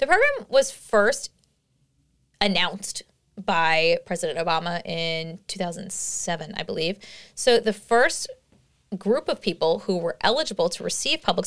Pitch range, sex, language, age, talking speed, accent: 175-235 Hz, female, English, 20-39, 125 wpm, American